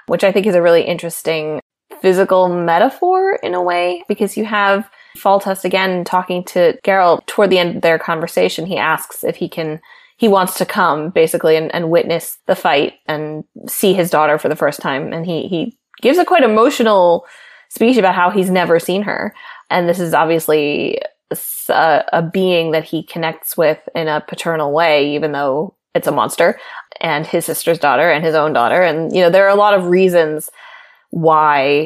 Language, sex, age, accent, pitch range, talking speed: English, female, 20-39, American, 165-200 Hz, 190 wpm